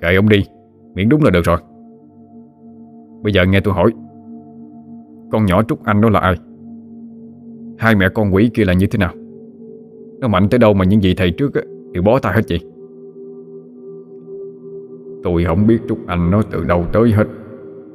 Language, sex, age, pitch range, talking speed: Vietnamese, male, 20-39, 90-125 Hz, 175 wpm